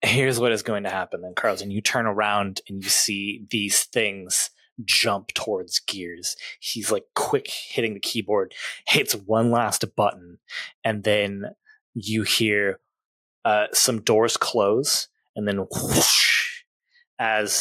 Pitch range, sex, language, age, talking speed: 100-125 Hz, male, English, 20-39, 140 wpm